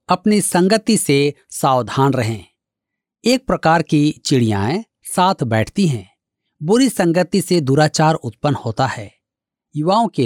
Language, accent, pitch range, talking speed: Hindi, native, 130-200 Hz, 125 wpm